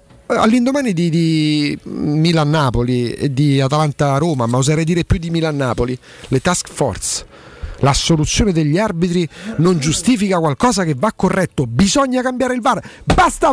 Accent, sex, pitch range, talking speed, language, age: native, male, 135-210 Hz, 145 wpm, Italian, 40-59